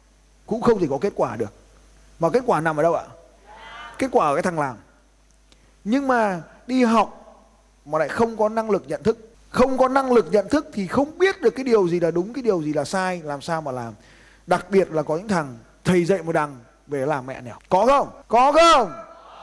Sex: male